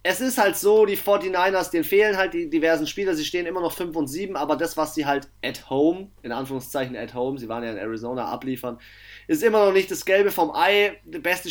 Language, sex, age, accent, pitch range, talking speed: German, male, 30-49, German, 120-190 Hz, 240 wpm